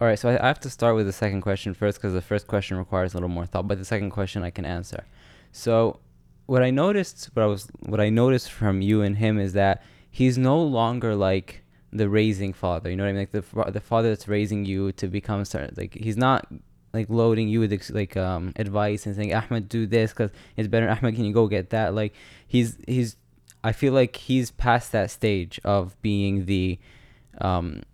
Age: 20-39